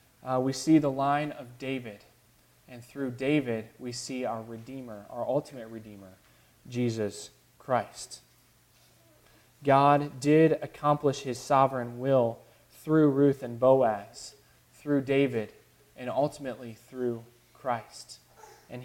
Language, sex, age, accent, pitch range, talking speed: English, male, 20-39, American, 120-145 Hz, 115 wpm